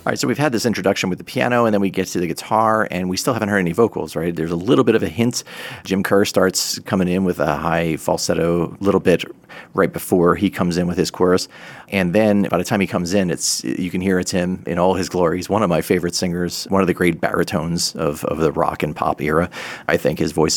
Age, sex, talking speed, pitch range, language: 40-59, male, 265 wpm, 85-95 Hz, English